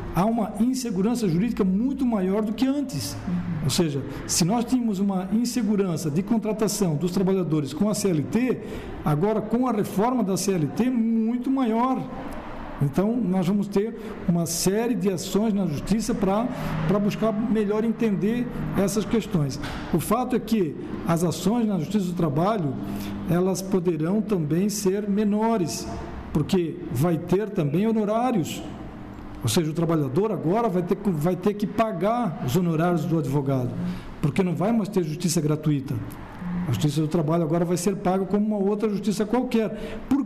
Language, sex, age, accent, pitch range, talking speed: Portuguese, male, 60-79, Brazilian, 175-225 Hz, 155 wpm